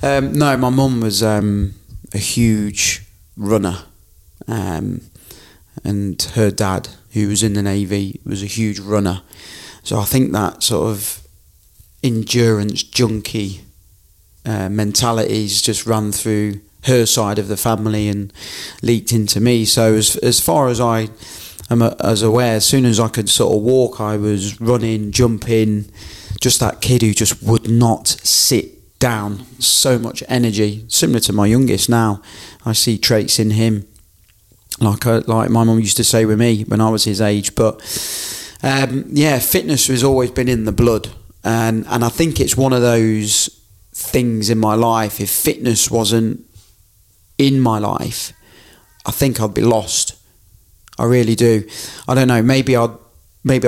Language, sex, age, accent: English, male, 30-49, British